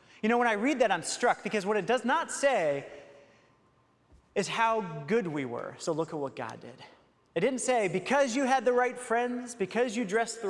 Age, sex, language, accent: 30-49, male, English, American